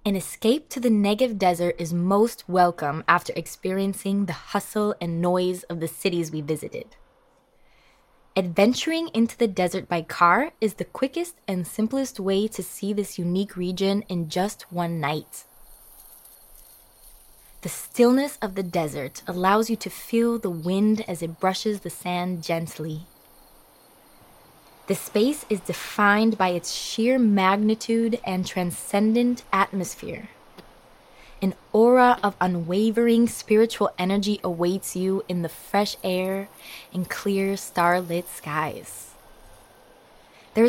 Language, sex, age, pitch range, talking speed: English, female, 20-39, 180-220 Hz, 125 wpm